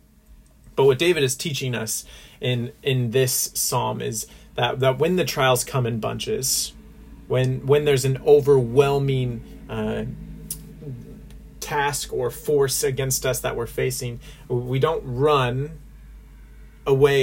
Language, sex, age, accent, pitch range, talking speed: English, male, 30-49, American, 115-135 Hz, 130 wpm